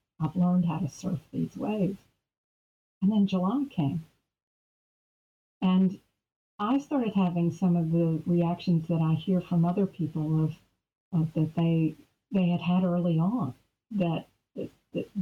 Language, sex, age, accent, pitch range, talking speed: English, female, 50-69, American, 160-200 Hz, 140 wpm